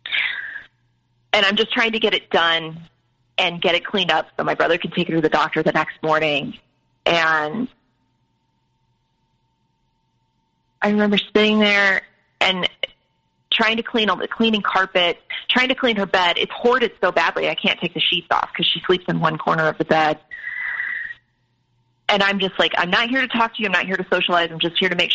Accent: American